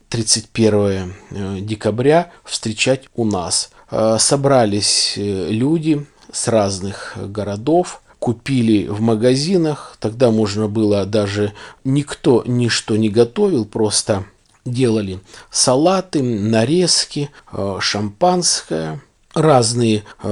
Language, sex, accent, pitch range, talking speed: Russian, male, native, 105-130 Hz, 80 wpm